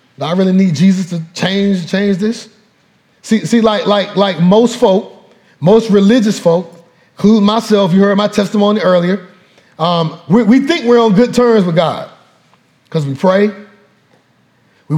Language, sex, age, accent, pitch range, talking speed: English, male, 30-49, American, 175-230 Hz, 160 wpm